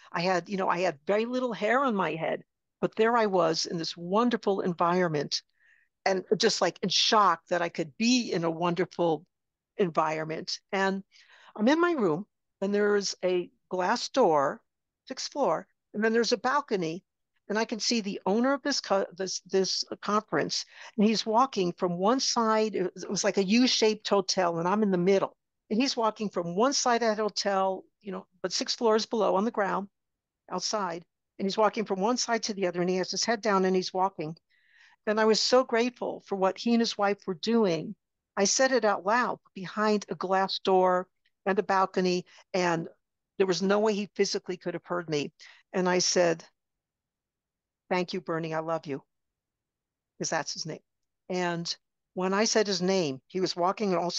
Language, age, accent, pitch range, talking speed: English, 60-79, American, 180-220 Hz, 195 wpm